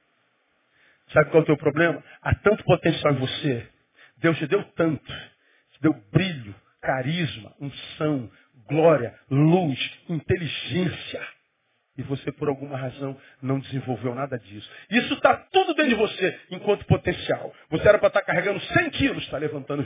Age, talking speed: 40-59, 150 wpm